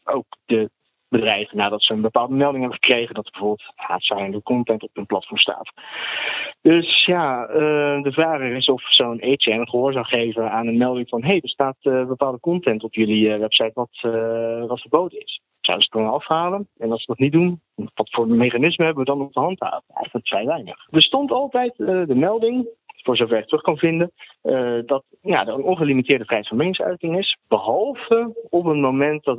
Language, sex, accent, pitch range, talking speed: Dutch, male, Dutch, 115-150 Hz, 205 wpm